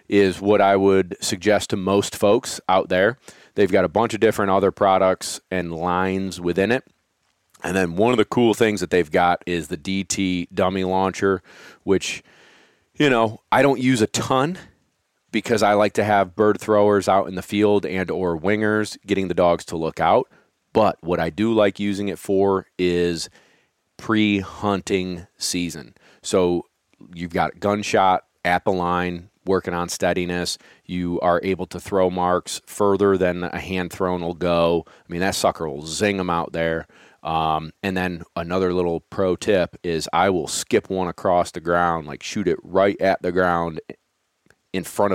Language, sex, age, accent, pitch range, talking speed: English, male, 30-49, American, 85-100 Hz, 175 wpm